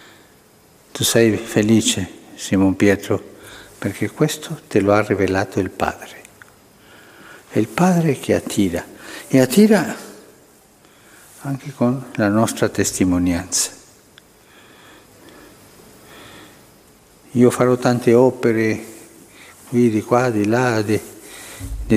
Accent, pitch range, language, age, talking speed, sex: native, 105-130 Hz, Italian, 60-79, 100 wpm, male